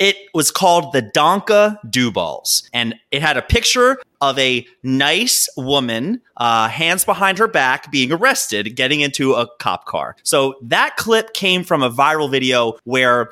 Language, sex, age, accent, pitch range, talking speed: English, male, 30-49, American, 120-185 Hz, 165 wpm